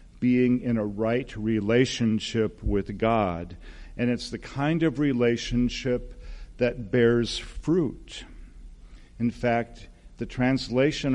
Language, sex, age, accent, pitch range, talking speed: English, male, 50-69, American, 100-125 Hz, 110 wpm